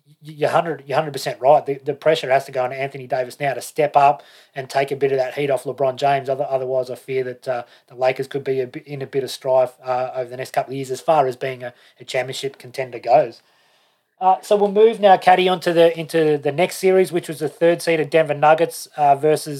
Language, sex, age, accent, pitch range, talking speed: English, male, 30-49, Australian, 140-155 Hz, 255 wpm